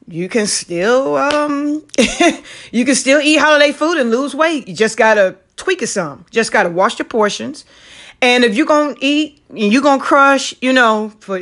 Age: 30-49